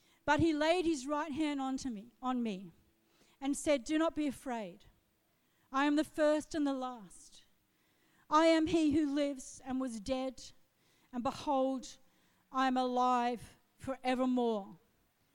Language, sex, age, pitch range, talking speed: English, female, 50-69, 240-305 Hz, 150 wpm